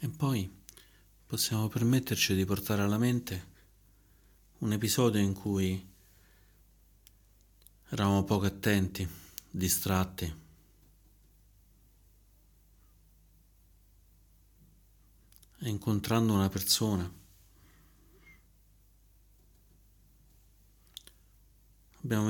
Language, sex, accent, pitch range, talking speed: Italian, male, native, 90-100 Hz, 55 wpm